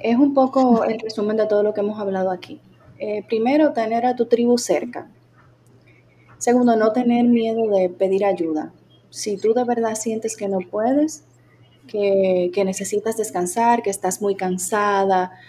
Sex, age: female, 20-39